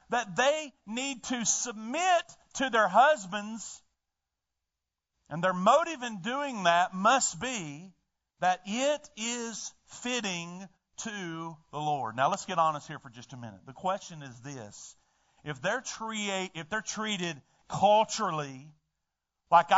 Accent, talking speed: American, 135 wpm